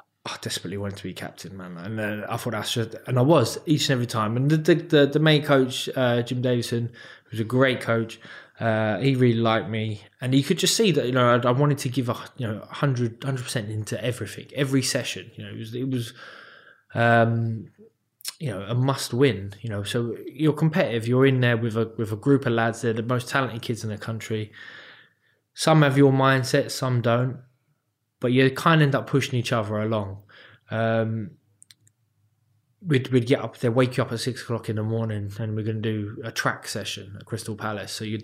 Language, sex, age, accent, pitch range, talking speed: English, male, 20-39, British, 110-135 Hz, 220 wpm